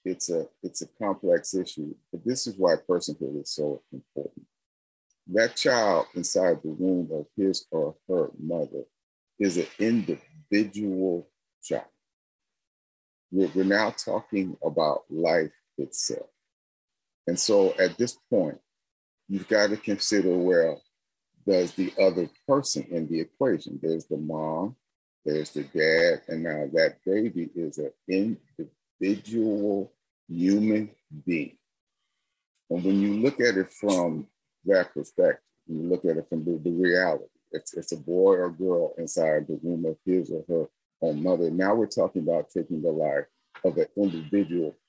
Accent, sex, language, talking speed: American, male, English, 145 wpm